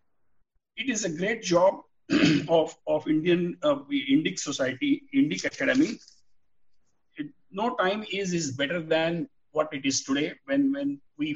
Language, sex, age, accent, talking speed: English, male, 50-69, Indian, 145 wpm